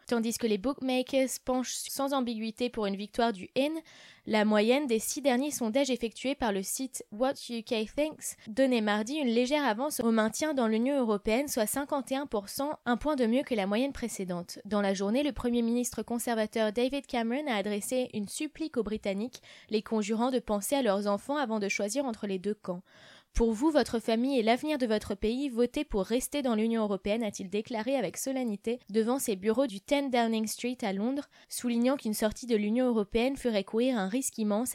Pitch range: 215-260 Hz